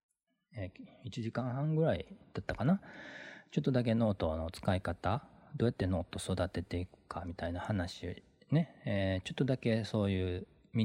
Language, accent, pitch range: Japanese, native, 85-115 Hz